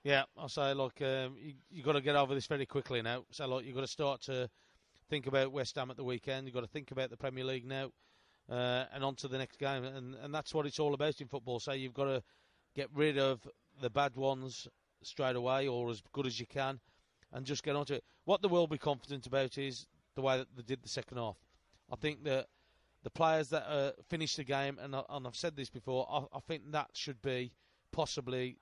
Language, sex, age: English, male, 30-49